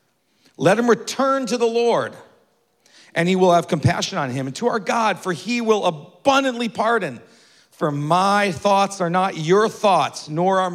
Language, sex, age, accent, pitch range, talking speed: English, male, 40-59, American, 145-225 Hz, 175 wpm